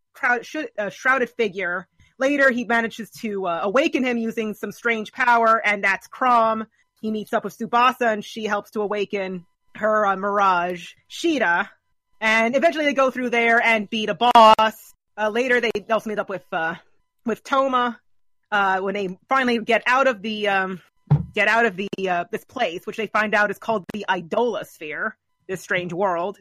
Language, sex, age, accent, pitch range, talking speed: English, female, 30-49, American, 200-240 Hz, 180 wpm